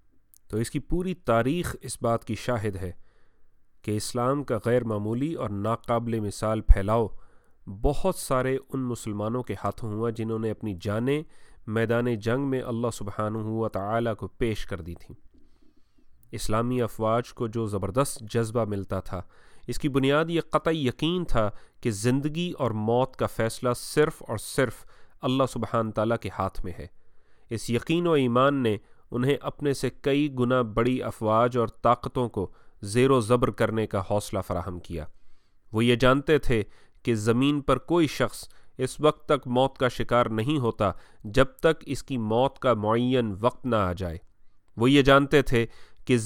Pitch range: 110-135 Hz